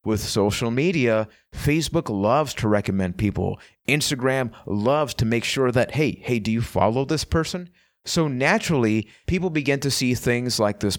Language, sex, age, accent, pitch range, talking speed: English, male, 30-49, American, 110-150 Hz, 165 wpm